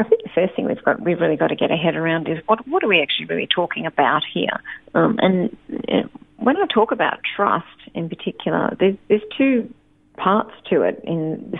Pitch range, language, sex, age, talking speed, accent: 160-210 Hz, English, female, 40-59, 215 wpm, Australian